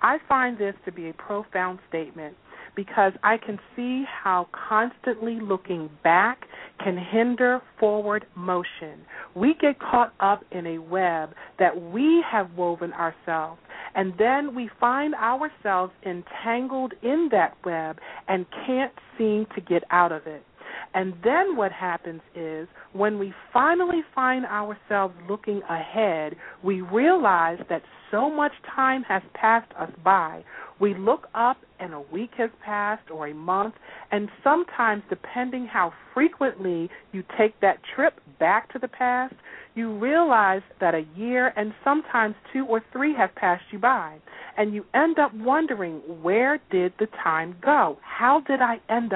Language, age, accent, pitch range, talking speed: English, 40-59, American, 180-250 Hz, 150 wpm